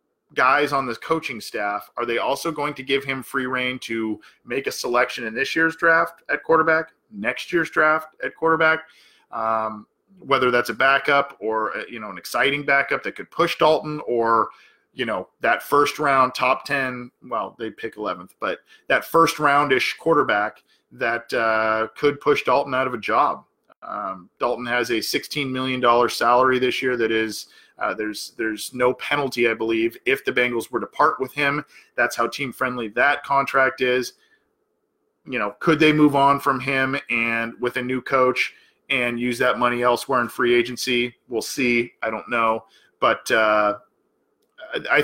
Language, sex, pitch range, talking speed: English, male, 115-145 Hz, 175 wpm